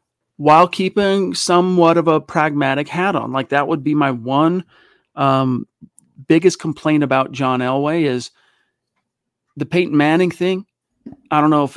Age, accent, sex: 40-59, American, male